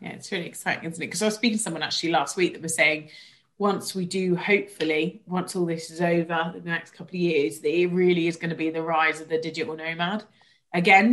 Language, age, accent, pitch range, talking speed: English, 30-49, British, 165-195 Hz, 255 wpm